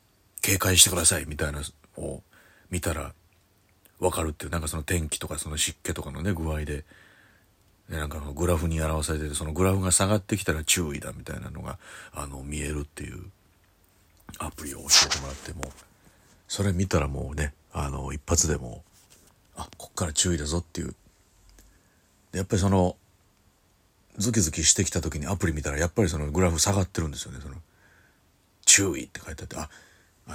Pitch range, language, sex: 75-95 Hz, Japanese, male